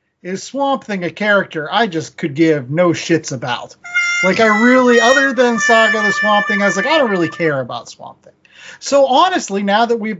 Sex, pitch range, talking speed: male, 165-225 Hz, 210 wpm